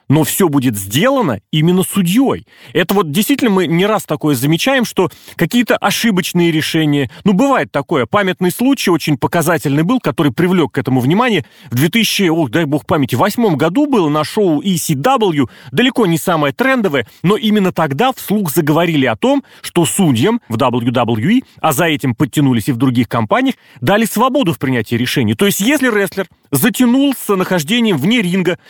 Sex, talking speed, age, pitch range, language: male, 165 wpm, 30-49, 150-210 Hz, Russian